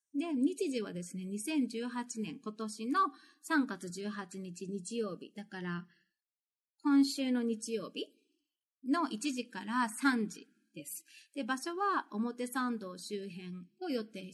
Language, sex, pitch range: Japanese, female, 200-280 Hz